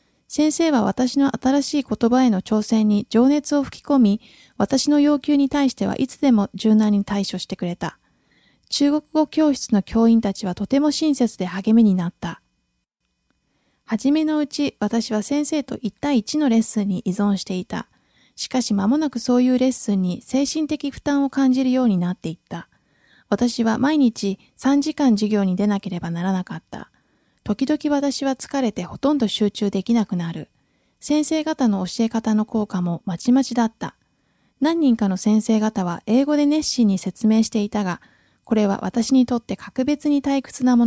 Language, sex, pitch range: Japanese, female, 200-275 Hz